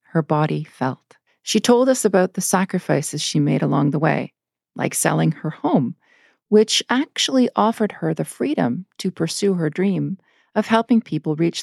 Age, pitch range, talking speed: 40-59, 145-200 Hz, 165 wpm